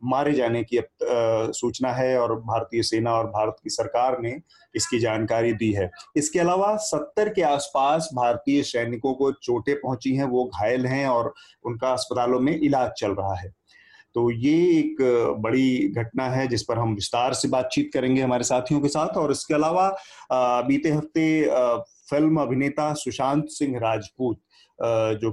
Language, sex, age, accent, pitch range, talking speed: Hindi, male, 30-49, native, 115-140 Hz, 165 wpm